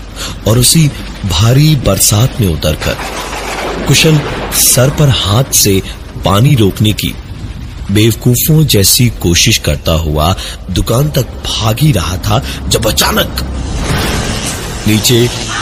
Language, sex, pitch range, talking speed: Hindi, male, 85-120 Hz, 105 wpm